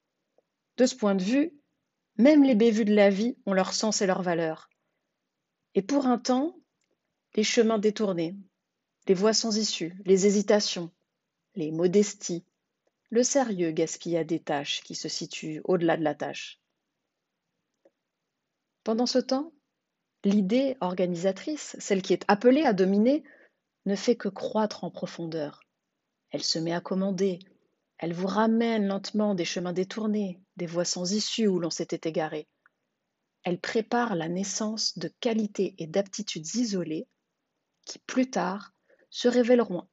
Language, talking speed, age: French, 145 wpm, 30-49